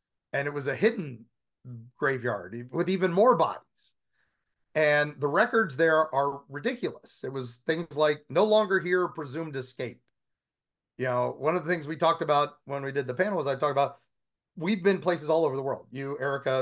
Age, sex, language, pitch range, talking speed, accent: 40-59, male, English, 135-180 Hz, 190 wpm, American